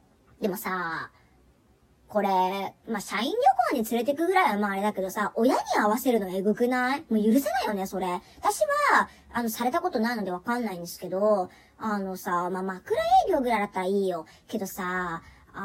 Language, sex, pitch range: Japanese, male, 200-310 Hz